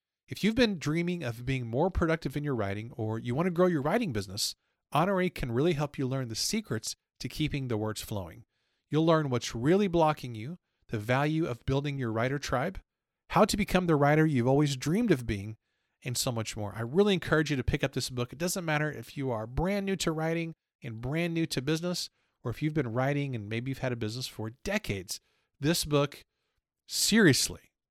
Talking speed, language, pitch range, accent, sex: 215 wpm, English, 115-160 Hz, American, male